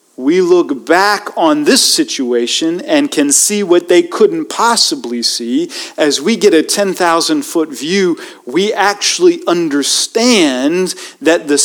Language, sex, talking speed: English, male, 130 wpm